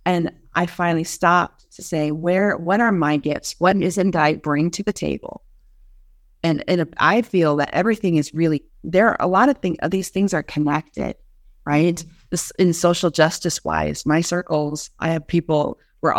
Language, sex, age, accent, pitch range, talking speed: English, female, 30-49, American, 145-170 Hz, 180 wpm